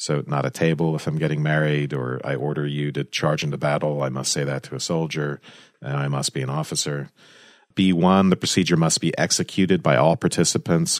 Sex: male